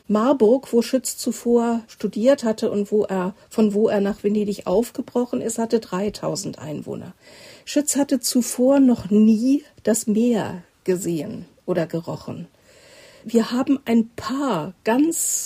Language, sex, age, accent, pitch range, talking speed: German, female, 50-69, German, 210-250 Hz, 130 wpm